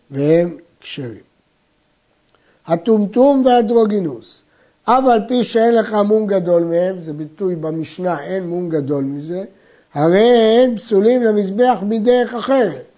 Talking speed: 115 wpm